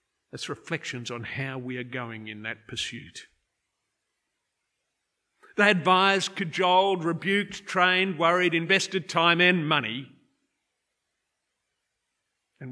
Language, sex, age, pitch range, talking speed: English, male, 50-69, 150-195 Hz, 100 wpm